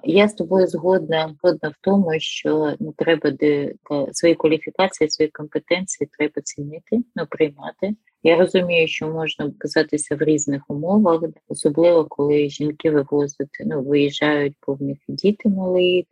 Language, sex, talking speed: Ukrainian, female, 140 wpm